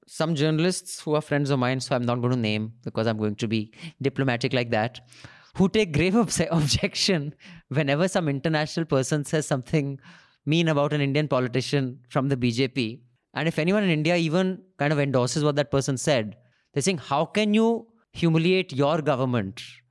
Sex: male